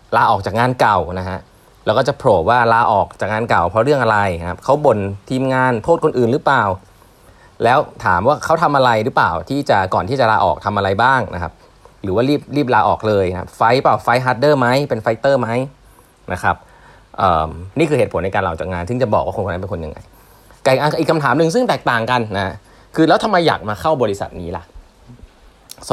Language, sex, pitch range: Thai, male, 95-140 Hz